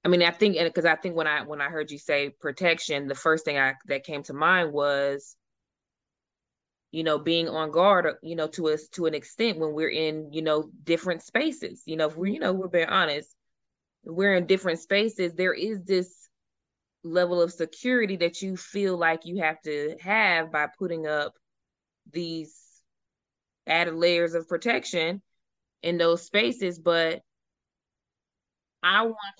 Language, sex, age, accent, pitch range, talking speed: English, female, 20-39, American, 155-180 Hz, 175 wpm